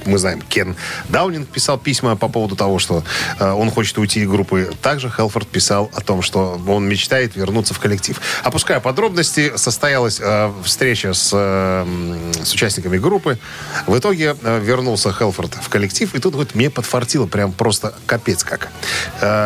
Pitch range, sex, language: 100-130 Hz, male, Russian